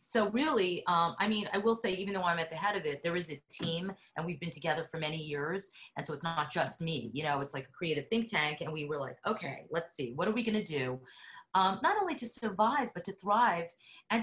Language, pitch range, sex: English, 160-215 Hz, female